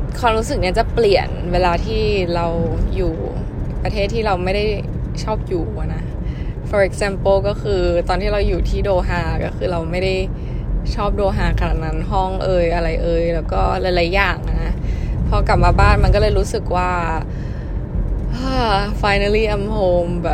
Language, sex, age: Thai, female, 20-39